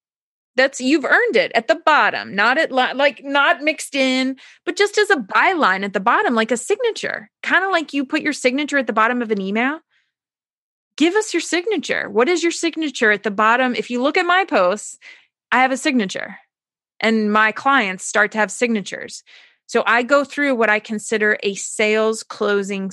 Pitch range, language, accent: 205-275 Hz, English, American